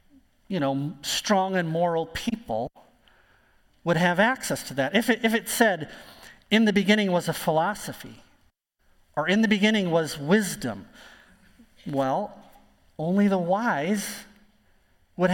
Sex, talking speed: male, 125 wpm